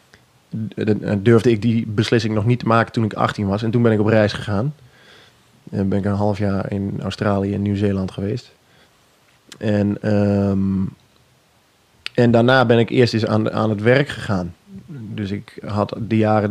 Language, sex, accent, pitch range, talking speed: Dutch, male, Dutch, 100-115 Hz, 175 wpm